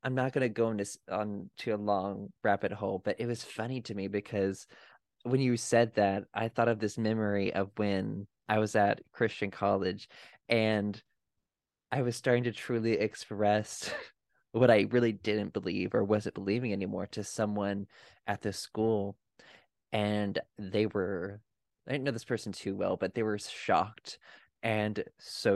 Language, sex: English, male